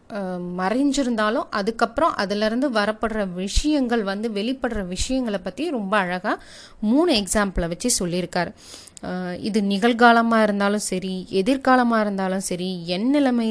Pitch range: 190-240 Hz